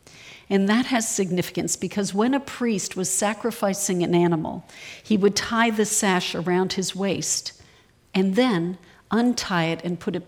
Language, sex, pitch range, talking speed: English, female, 170-210 Hz, 160 wpm